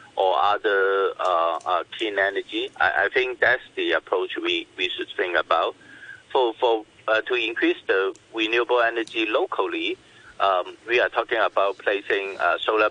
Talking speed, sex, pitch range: 160 wpm, male, 350-415 Hz